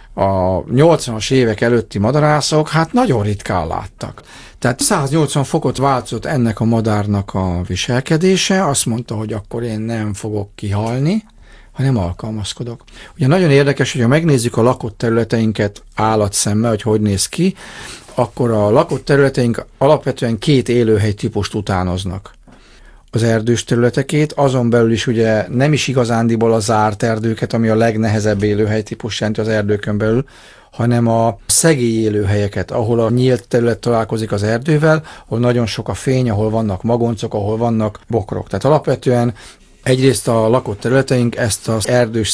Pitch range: 105-130 Hz